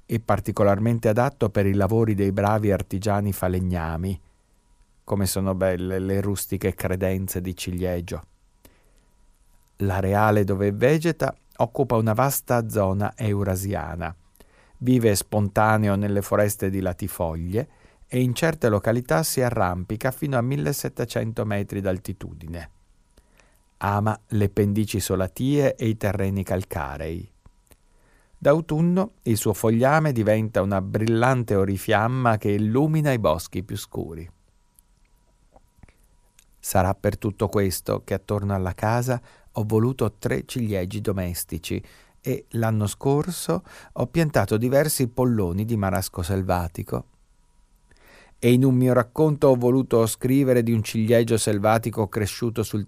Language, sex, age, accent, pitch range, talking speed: Italian, male, 50-69, native, 95-120 Hz, 115 wpm